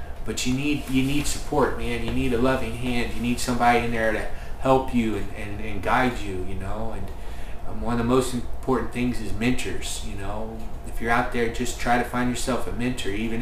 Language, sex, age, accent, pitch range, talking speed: English, male, 30-49, American, 95-115 Hz, 225 wpm